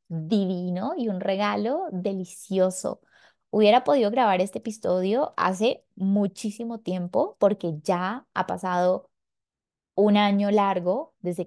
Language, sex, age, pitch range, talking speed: Spanish, female, 20-39, 180-215 Hz, 110 wpm